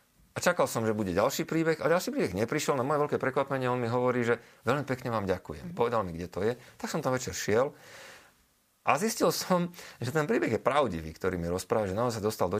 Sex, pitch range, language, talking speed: male, 100-130 Hz, Slovak, 235 wpm